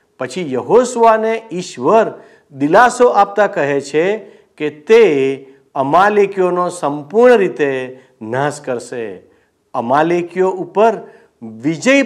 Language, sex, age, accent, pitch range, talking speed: Gujarati, male, 50-69, native, 145-220 Hz, 85 wpm